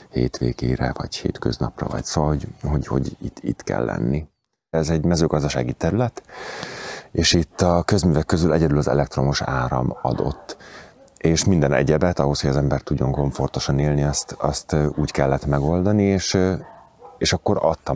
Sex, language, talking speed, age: male, Hungarian, 155 wpm, 30-49